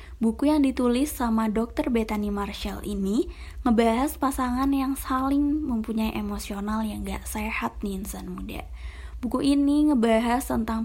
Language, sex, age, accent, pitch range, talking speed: Indonesian, female, 20-39, native, 195-250 Hz, 135 wpm